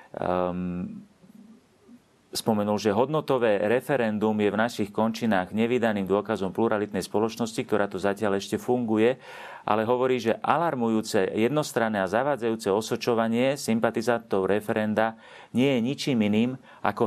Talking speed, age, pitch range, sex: 115 wpm, 40-59, 95-115 Hz, male